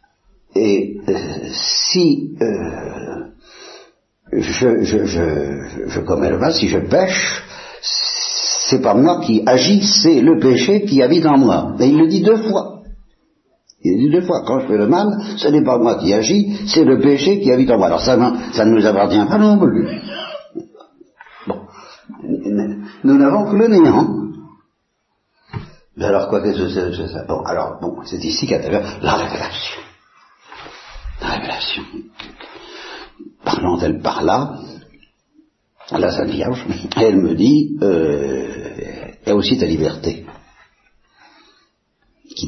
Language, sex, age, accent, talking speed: Italian, male, 60-79, French, 145 wpm